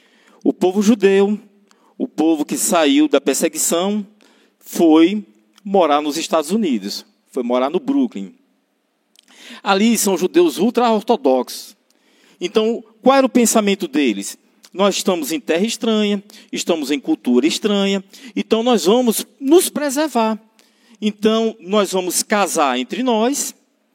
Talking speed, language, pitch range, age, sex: 120 wpm, Portuguese, 165-250 Hz, 50-69, male